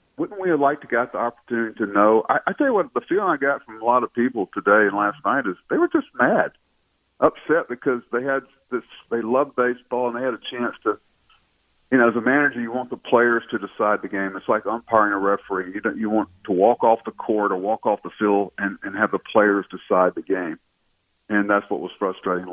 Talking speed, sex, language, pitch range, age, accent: 245 wpm, male, English, 110-155 Hz, 50-69, American